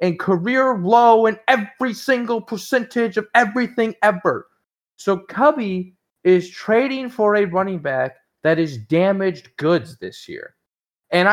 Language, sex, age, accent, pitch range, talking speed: English, male, 30-49, American, 180-250 Hz, 130 wpm